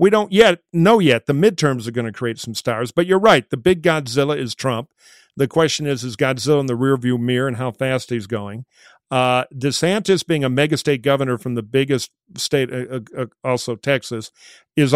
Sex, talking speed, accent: male, 205 wpm, American